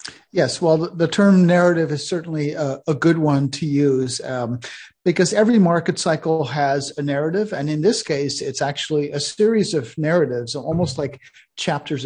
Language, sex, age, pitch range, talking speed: English, male, 50-69, 140-175 Hz, 170 wpm